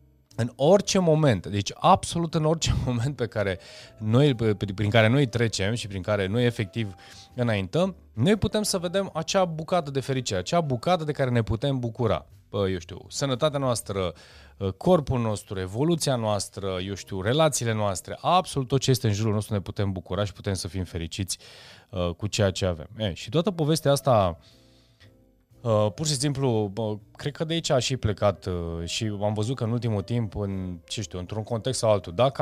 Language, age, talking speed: Romanian, 20-39, 185 wpm